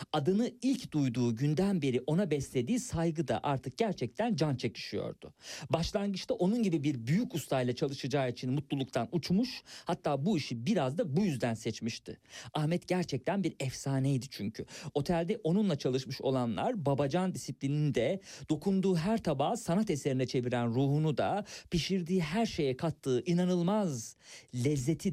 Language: Turkish